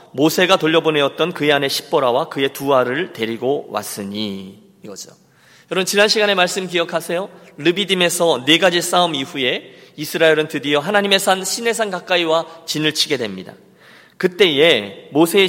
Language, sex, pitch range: Korean, male, 145-210 Hz